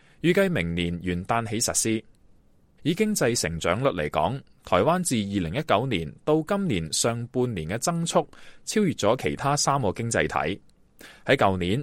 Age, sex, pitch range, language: 20-39, male, 95-155 Hz, Chinese